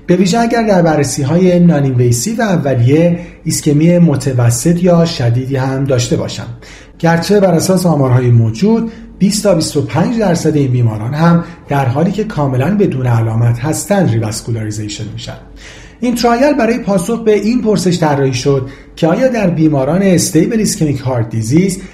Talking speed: 140 wpm